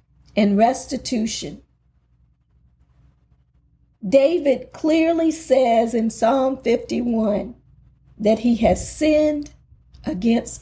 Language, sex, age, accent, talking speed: English, female, 40-59, American, 75 wpm